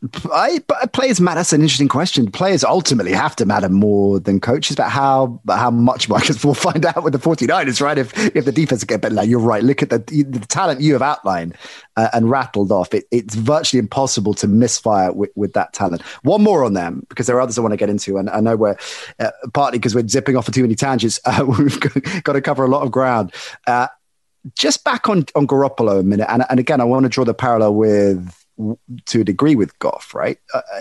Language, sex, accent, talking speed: English, male, British, 240 wpm